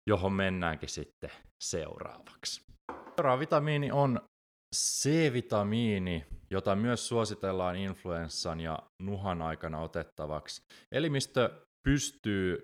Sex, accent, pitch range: male, native, 85-115 Hz